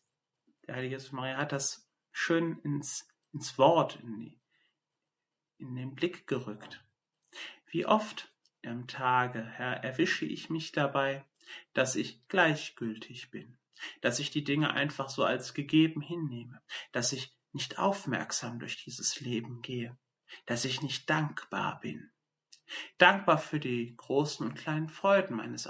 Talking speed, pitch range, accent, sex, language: 135 wpm, 125-155 Hz, German, male, German